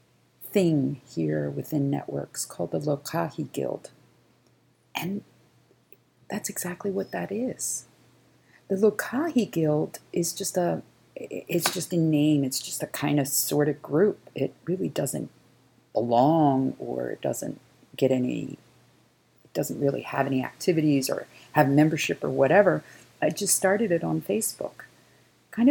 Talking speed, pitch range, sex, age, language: 135 wpm, 130-175 Hz, female, 40-59, English